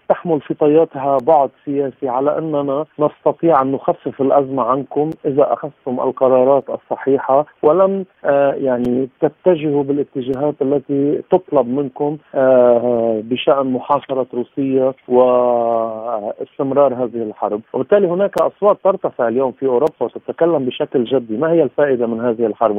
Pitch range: 125-150 Hz